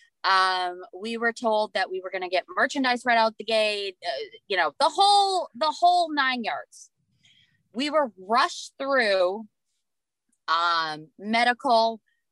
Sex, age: female, 20-39